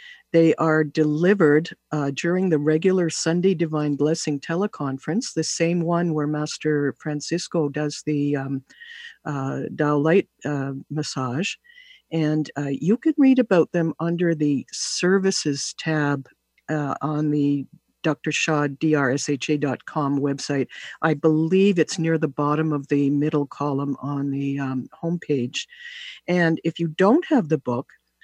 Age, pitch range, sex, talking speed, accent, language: 60-79, 140-170 Hz, female, 135 wpm, American, English